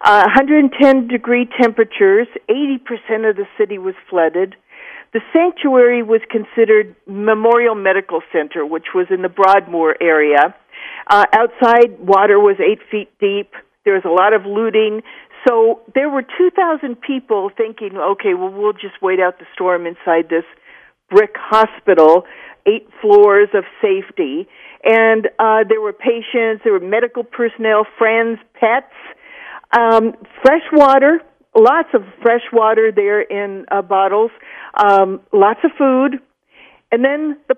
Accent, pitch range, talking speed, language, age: American, 200-270 Hz, 135 wpm, English, 50-69